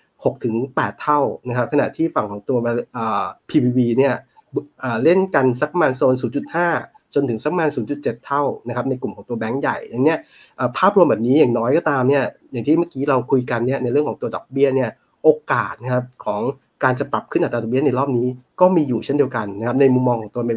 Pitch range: 120-150 Hz